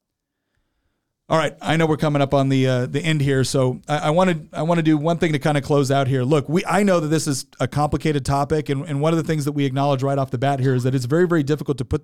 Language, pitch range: English, 145-195 Hz